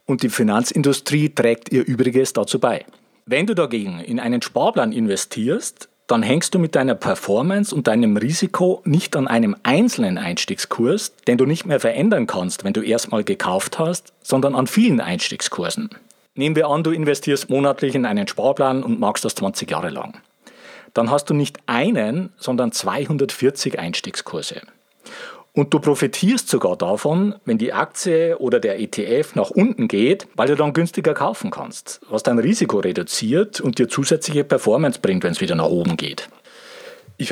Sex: male